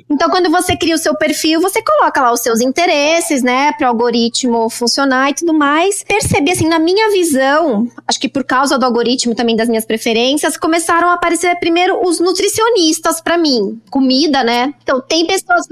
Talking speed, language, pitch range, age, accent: 185 wpm, Portuguese, 260-345 Hz, 20-39, Brazilian